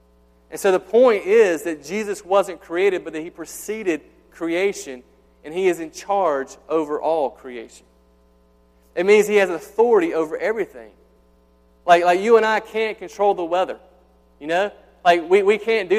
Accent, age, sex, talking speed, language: American, 30-49, male, 170 wpm, English